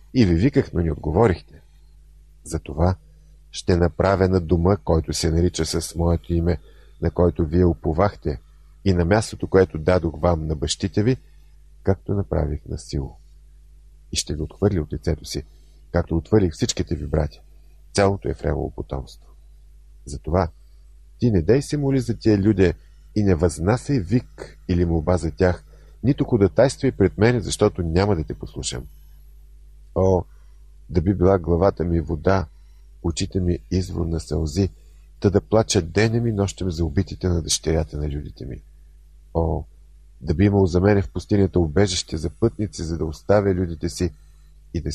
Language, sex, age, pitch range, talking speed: Bulgarian, male, 50-69, 75-95 Hz, 160 wpm